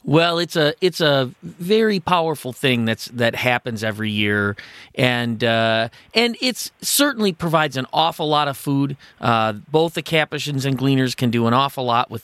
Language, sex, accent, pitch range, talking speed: English, male, American, 115-155 Hz, 175 wpm